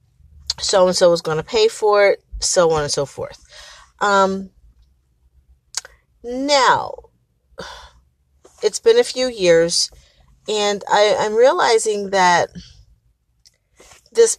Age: 40-59